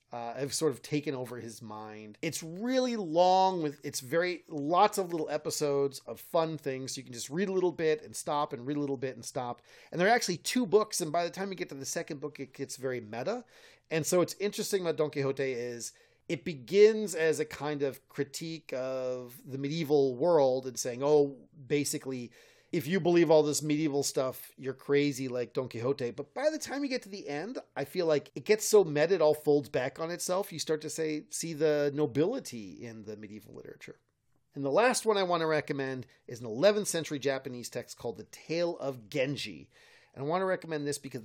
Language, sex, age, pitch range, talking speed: English, male, 30-49, 130-175 Hz, 220 wpm